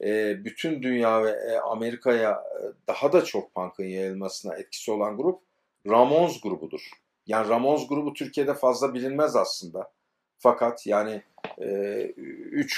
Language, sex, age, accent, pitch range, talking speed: Turkish, male, 50-69, native, 110-145 Hz, 115 wpm